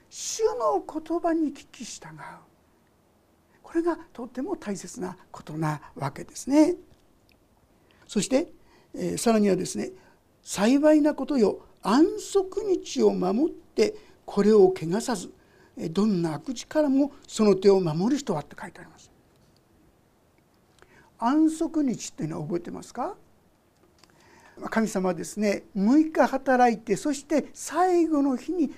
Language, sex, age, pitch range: Japanese, male, 60-79, 200-310 Hz